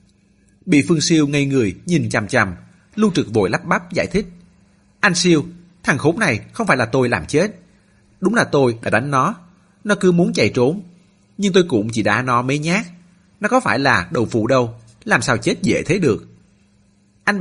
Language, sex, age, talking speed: Vietnamese, male, 30-49, 205 wpm